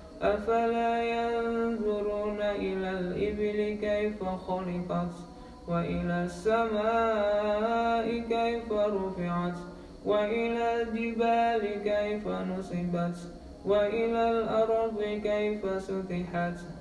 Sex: male